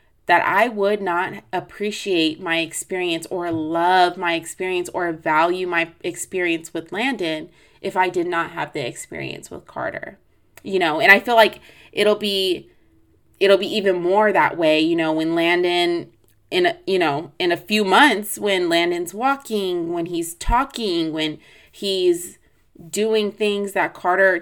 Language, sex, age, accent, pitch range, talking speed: English, female, 20-39, American, 170-220 Hz, 155 wpm